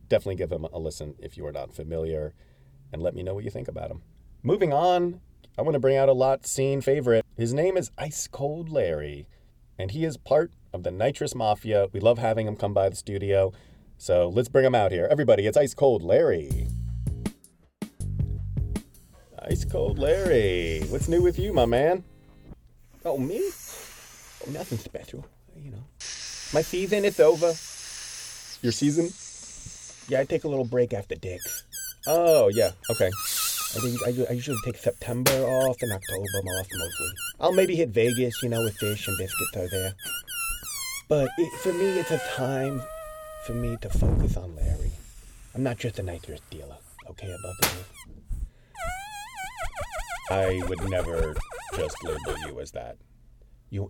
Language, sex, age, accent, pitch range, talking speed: English, male, 30-49, American, 95-160 Hz, 170 wpm